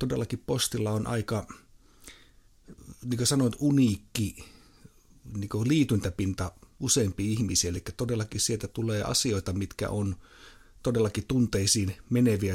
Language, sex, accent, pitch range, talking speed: Finnish, male, native, 95-110 Hz, 110 wpm